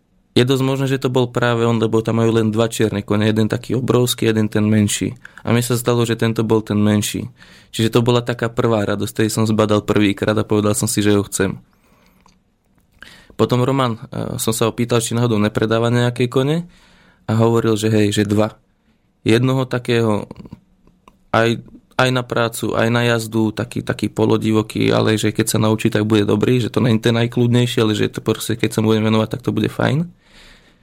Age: 20-39